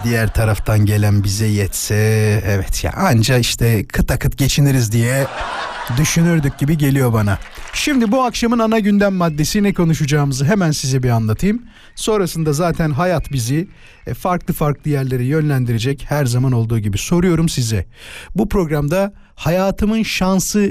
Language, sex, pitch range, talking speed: Turkish, male, 120-180 Hz, 135 wpm